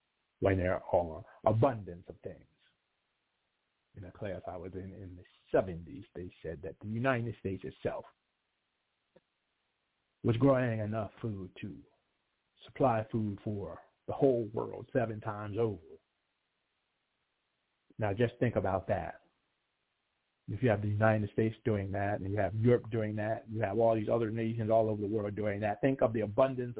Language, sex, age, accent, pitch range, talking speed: English, male, 50-69, American, 95-115 Hz, 160 wpm